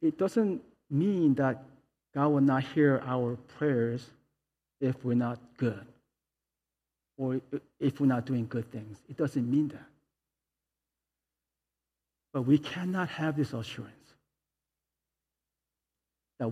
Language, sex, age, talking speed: English, male, 50-69, 115 wpm